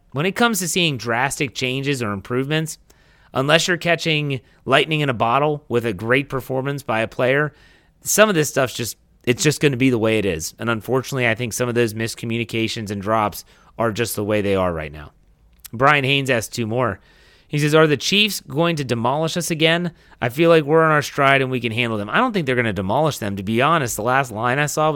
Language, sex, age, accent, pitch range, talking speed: English, male, 30-49, American, 115-150 Hz, 235 wpm